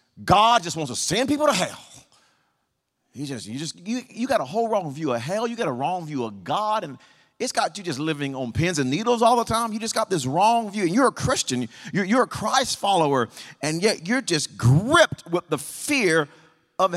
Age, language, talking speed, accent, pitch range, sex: 40-59, English, 230 wpm, American, 130-180 Hz, male